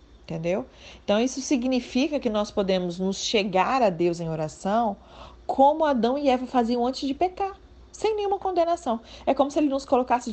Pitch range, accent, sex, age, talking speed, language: 185-275 Hz, Brazilian, female, 40-59, 175 wpm, Portuguese